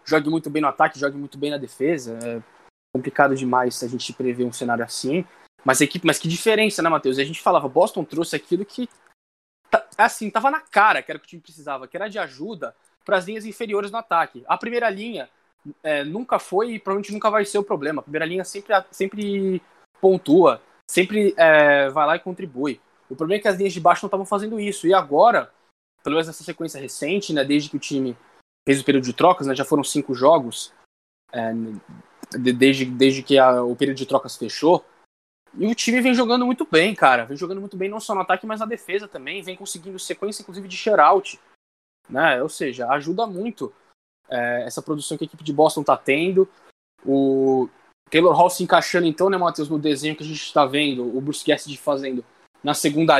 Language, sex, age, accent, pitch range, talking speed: Portuguese, male, 20-39, Brazilian, 140-195 Hz, 210 wpm